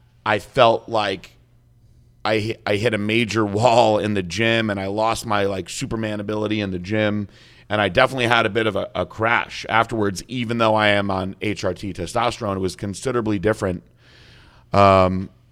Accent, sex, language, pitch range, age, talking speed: American, male, English, 100-120 Hz, 30-49, 175 wpm